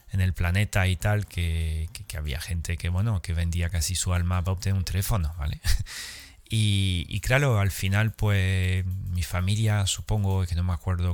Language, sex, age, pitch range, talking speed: Spanish, male, 30-49, 85-105 Hz, 195 wpm